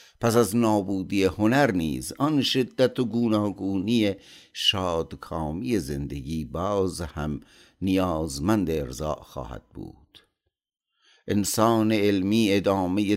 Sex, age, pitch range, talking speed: male, 50-69, 90-115 Hz, 90 wpm